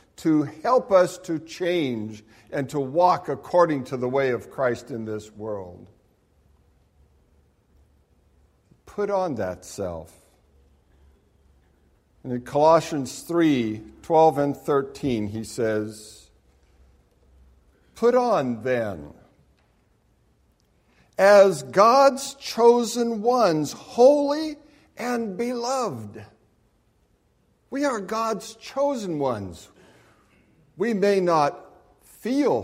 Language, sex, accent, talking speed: English, male, American, 90 wpm